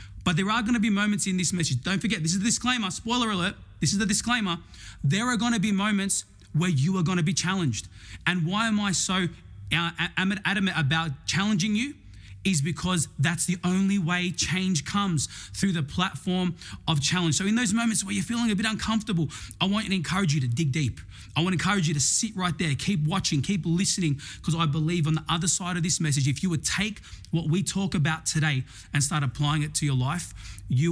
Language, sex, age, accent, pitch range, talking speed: English, male, 20-39, Australian, 135-190 Hz, 215 wpm